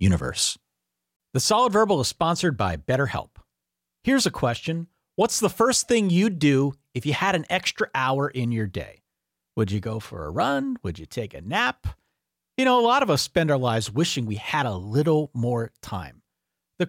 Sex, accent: male, American